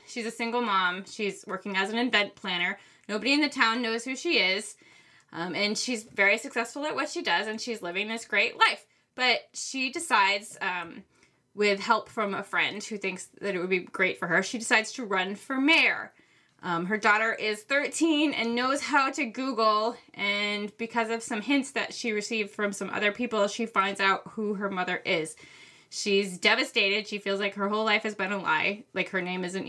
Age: 20-39